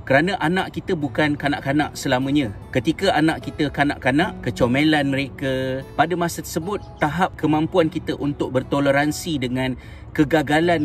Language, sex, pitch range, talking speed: Malay, male, 130-160 Hz, 120 wpm